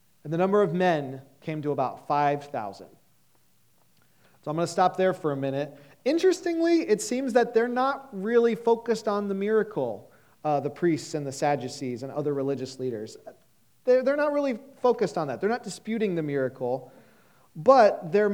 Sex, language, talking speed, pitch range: male, English, 175 wpm, 145-210 Hz